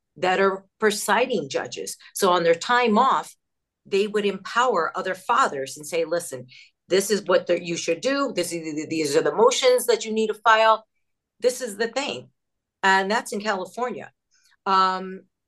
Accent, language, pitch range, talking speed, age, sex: American, English, 180-230 Hz, 160 wpm, 50-69, female